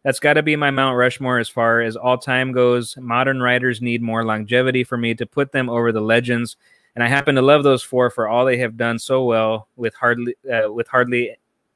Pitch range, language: 115-140 Hz, English